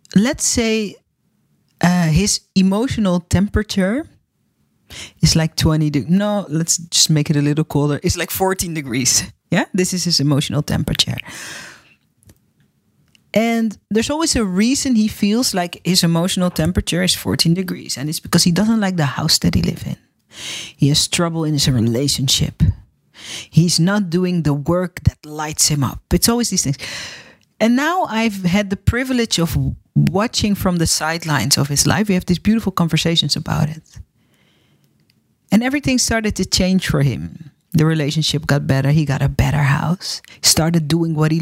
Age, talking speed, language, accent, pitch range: 40-59, 165 wpm, Dutch, Dutch, 150-205 Hz